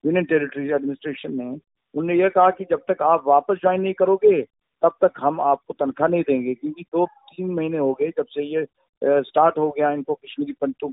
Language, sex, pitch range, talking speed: Hindi, male, 145-205 Hz, 205 wpm